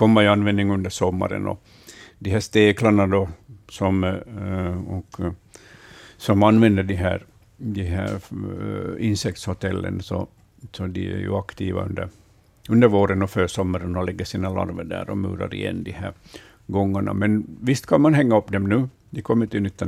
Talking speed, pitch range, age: 165 wpm, 95-110 Hz, 60-79